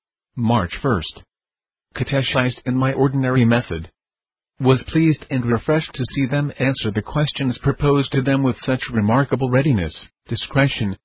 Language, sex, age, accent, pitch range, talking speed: English, male, 50-69, American, 115-140 Hz, 135 wpm